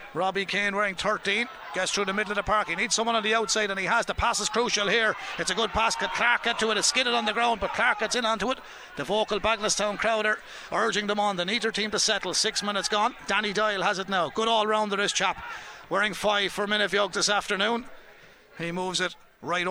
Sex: male